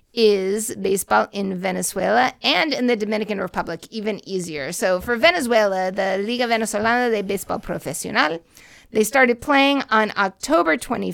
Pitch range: 205-255 Hz